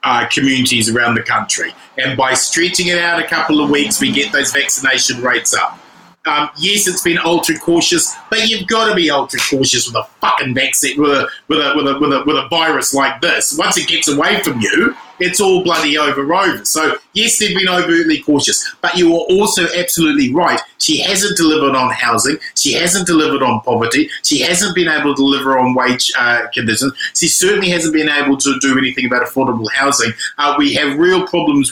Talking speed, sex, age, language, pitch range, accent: 205 wpm, male, 30-49, English, 130-175 Hz, Australian